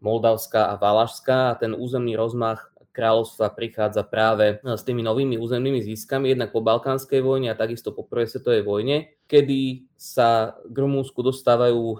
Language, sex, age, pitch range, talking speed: Slovak, male, 20-39, 110-135 Hz, 150 wpm